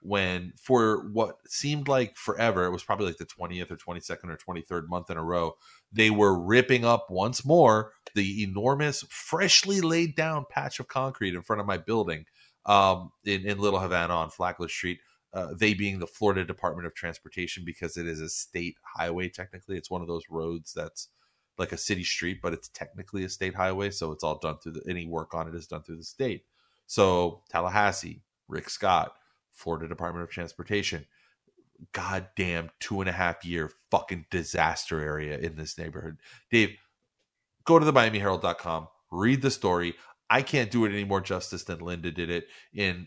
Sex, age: male, 30-49